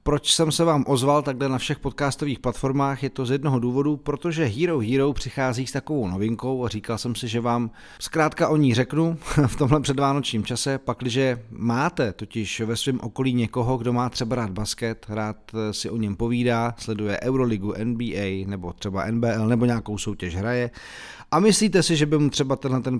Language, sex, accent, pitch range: Czech, male, native, 105-130 Hz